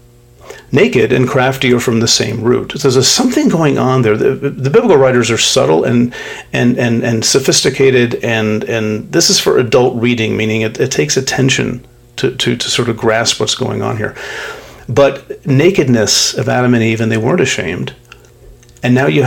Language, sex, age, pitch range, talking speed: English, male, 40-59, 120-130 Hz, 185 wpm